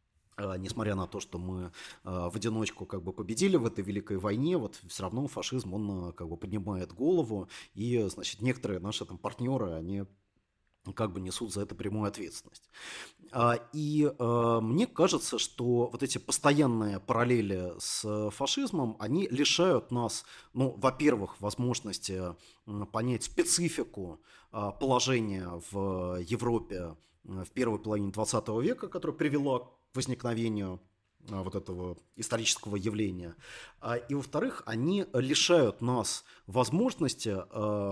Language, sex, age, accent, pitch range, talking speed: Russian, male, 30-49, native, 95-125 Hz, 105 wpm